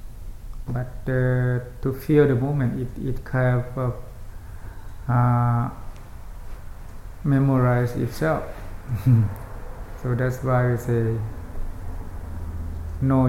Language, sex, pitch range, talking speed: English, male, 100-125 Hz, 85 wpm